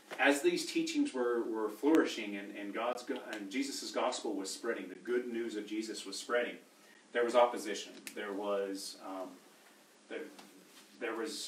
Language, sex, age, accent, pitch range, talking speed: English, male, 30-49, American, 100-130 Hz, 150 wpm